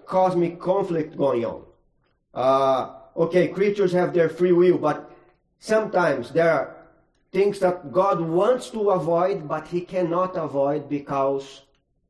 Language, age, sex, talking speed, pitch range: English, 40-59, male, 130 wpm, 145-180 Hz